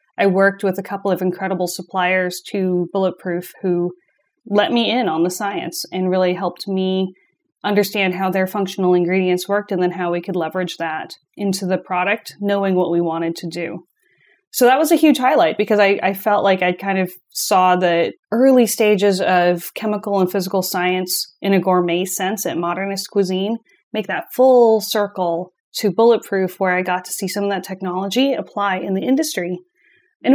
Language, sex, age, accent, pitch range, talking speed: English, female, 30-49, American, 180-220 Hz, 185 wpm